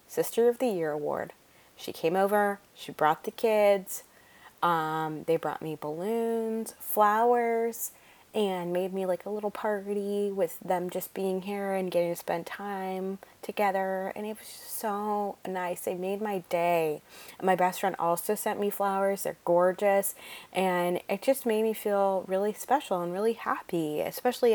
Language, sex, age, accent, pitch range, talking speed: English, female, 20-39, American, 175-215 Hz, 165 wpm